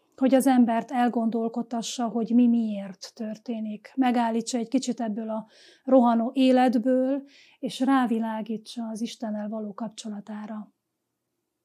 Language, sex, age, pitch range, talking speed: Hungarian, female, 30-49, 225-255 Hz, 110 wpm